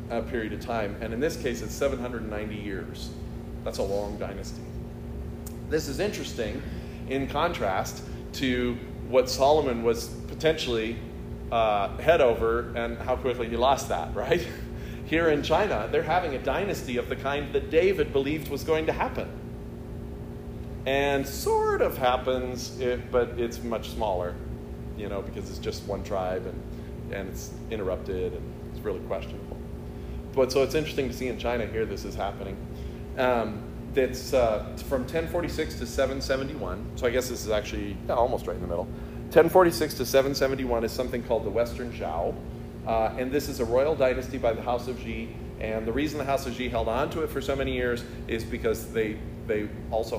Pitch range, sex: 85-130 Hz, male